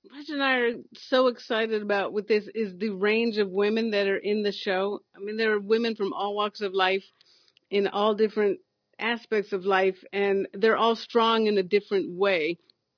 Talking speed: 200 wpm